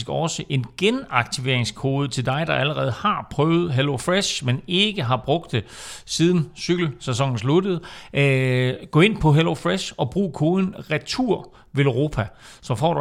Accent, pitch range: native, 115-155 Hz